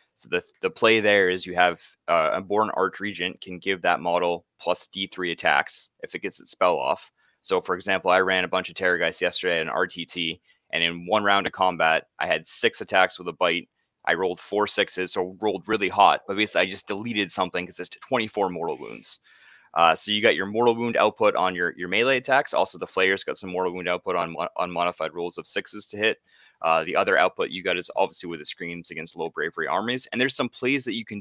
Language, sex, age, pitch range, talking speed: English, male, 20-39, 90-110 Hz, 235 wpm